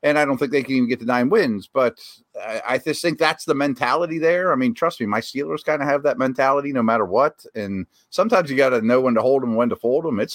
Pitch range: 125-155 Hz